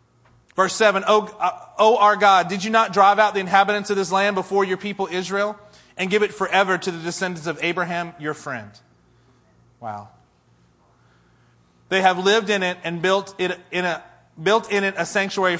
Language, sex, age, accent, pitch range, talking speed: English, male, 30-49, American, 160-200 Hz, 190 wpm